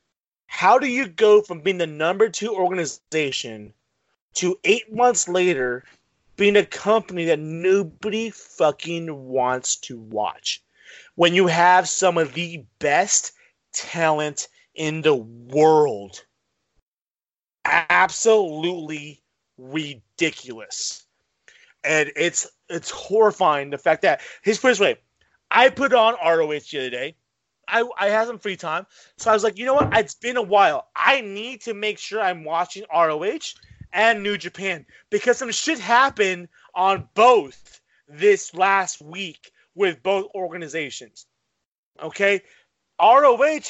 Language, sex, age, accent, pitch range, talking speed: English, male, 30-49, American, 160-225 Hz, 130 wpm